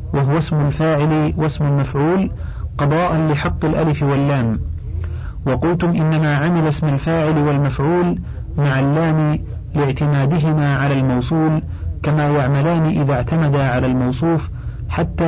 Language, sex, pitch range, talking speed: Arabic, male, 140-160 Hz, 105 wpm